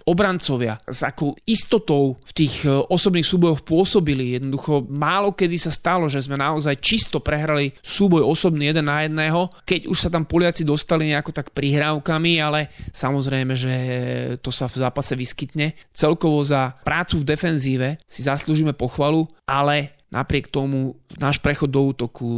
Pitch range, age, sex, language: 135-155 Hz, 30-49, male, Slovak